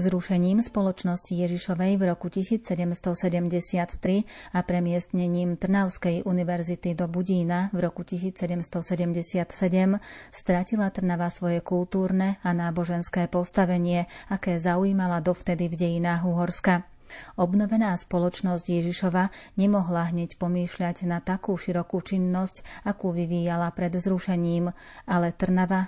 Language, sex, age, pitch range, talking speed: Slovak, female, 30-49, 175-190 Hz, 100 wpm